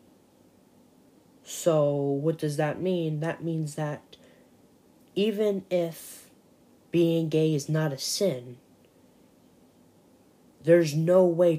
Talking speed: 100 wpm